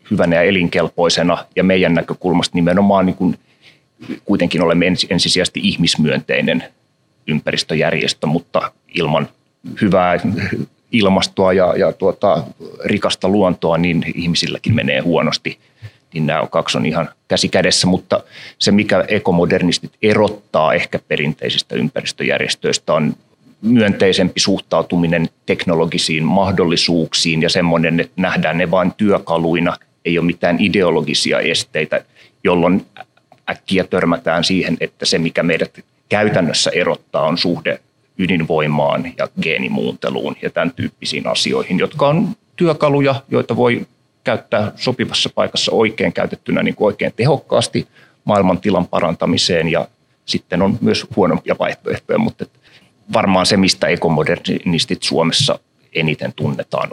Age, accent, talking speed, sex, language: 30-49, native, 110 wpm, male, Finnish